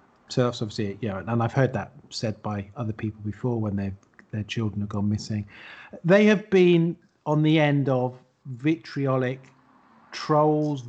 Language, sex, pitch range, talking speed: English, male, 115-140 Hz, 160 wpm